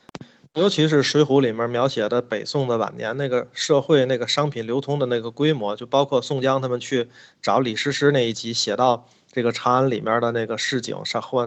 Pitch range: 115-145 Hz